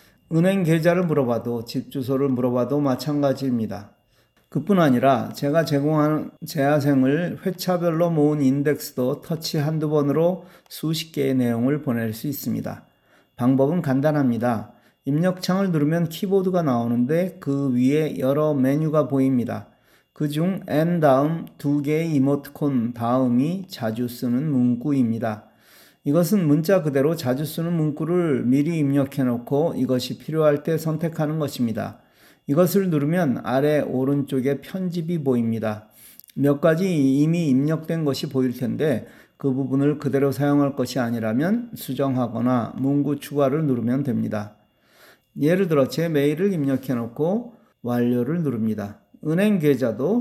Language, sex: Korean, male